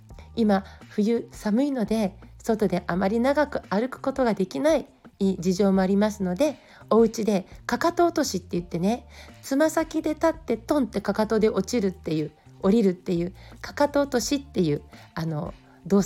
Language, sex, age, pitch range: Japanese, female, 40-59, 185-275 Hz